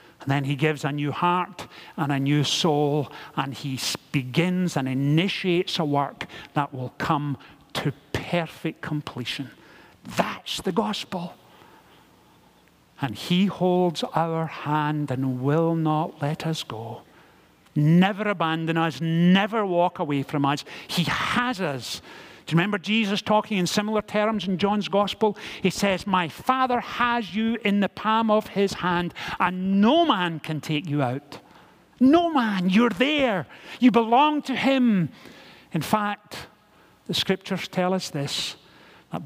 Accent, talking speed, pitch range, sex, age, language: British, 145 wpm, 145-185 Hz, male, 50-69, English